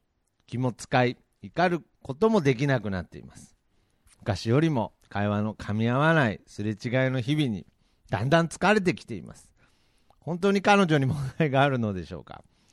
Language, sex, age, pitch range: Japanese, male, 50-69, 110-140 Hz